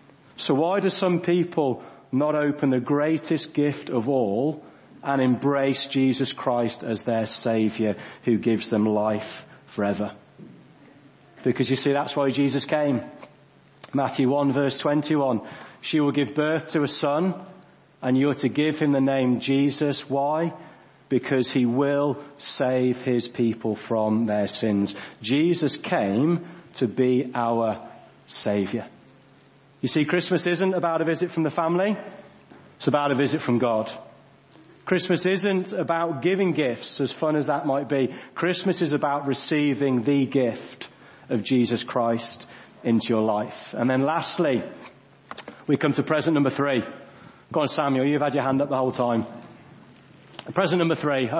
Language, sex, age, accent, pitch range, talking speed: English, male, 40-59, British, 125-155 Hz, 150 wpm